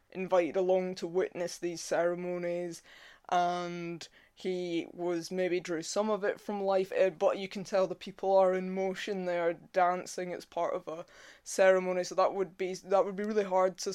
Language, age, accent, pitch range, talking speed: English, 20-39, British, 180-205 Hz, 175 wpm